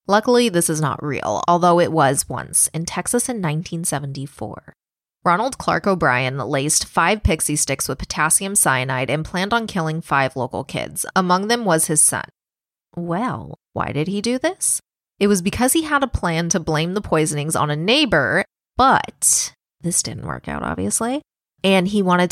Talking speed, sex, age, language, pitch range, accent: 170 wpm, female, 20-39, English, 150-195 Hz, American